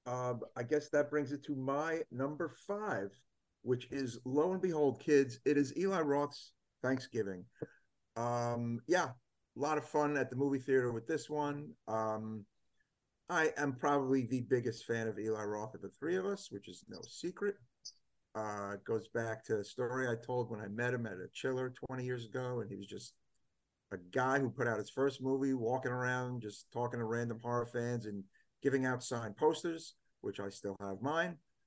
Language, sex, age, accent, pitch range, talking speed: English, male, 50-69, American, 110-140 Hz, 195 wpm